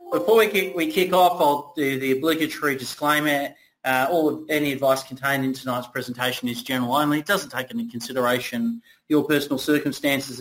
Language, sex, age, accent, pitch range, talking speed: English, male, 30-49, Australian, 130-165 Hz, 180 wpm